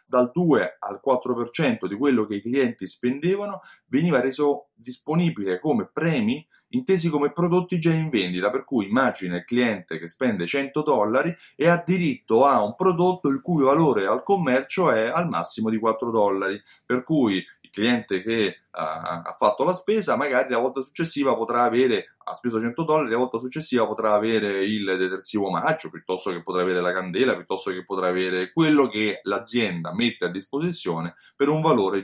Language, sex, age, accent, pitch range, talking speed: Italian, male, 30-49, native, 100-165 Hz, 180 wpm